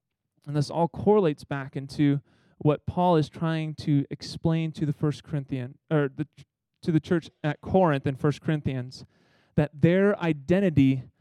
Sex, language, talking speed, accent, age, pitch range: male, English, 155 wpm, American, 30-49, 140-180 Hz